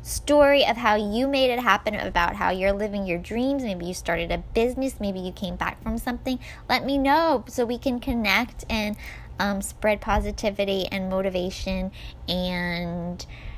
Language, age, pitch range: English, 10-29, 185-235 Hz